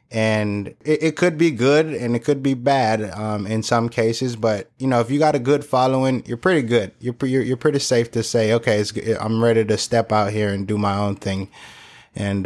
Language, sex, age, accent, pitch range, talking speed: English, male, 20-39, American, 110-130 Hz, 225 wpm